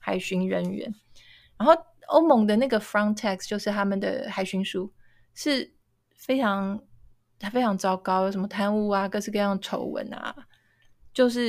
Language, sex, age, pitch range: Chinese, female, 20-39, 195-255 Hz